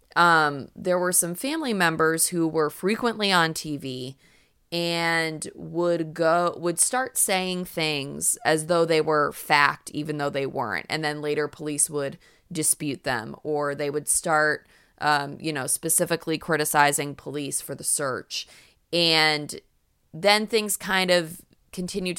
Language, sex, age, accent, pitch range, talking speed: English, female, 20-39, American, 150-180 Hz, 145 wpm